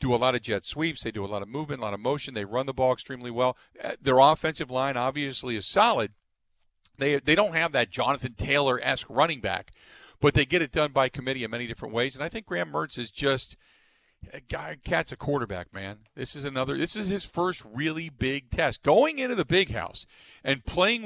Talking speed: 225 wpm